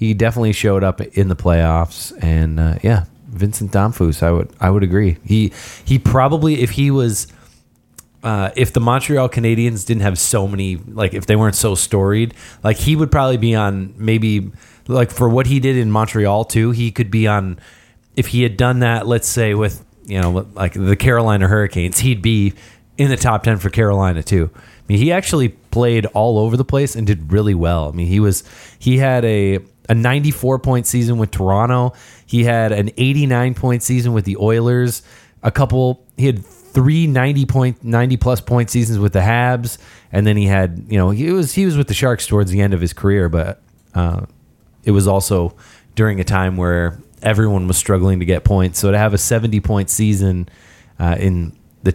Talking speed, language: 200 wpm, English